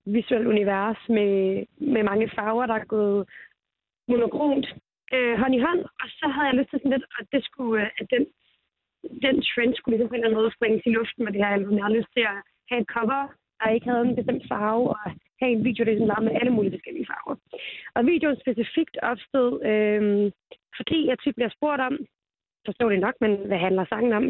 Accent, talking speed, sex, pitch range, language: native, 210 wpm, female, 215-255 Hz, Danish